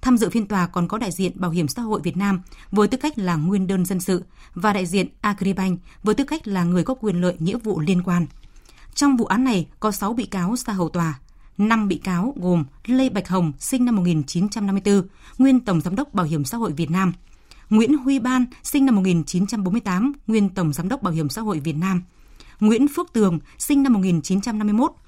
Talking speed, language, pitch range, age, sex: 220 wpm, Vietnamese, 180-225 Hz, 20-39, female